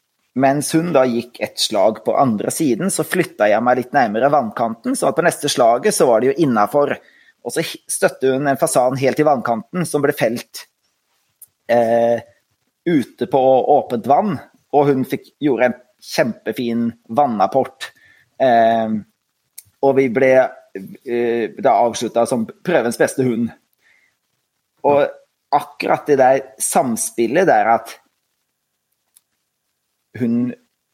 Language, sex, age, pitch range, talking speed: English, male, 30-49, 120-145 Hz, 130 wpm